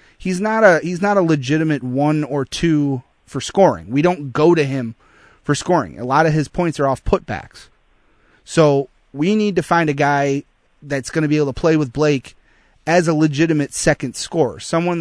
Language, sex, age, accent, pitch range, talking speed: English, male, 30-49, American, 140-160 Hz, 195 wpm